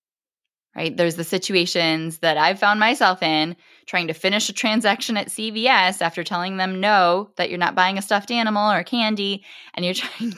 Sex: female